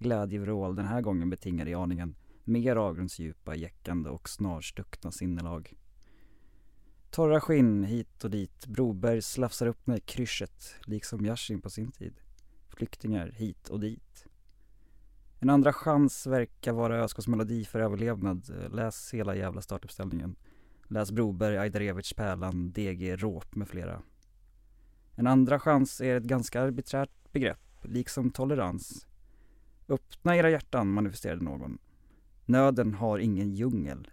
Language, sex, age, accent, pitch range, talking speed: English, male, 20-39, Norwegian, 95-125 Hz, 125 wpm